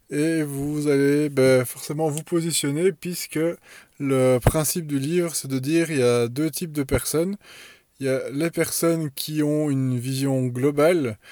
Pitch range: 130-150 Hz